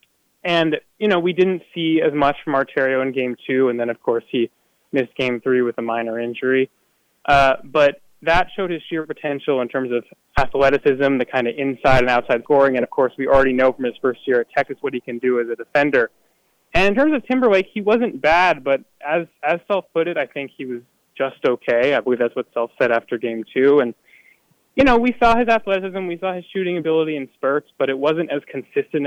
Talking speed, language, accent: 225 wpm, English, American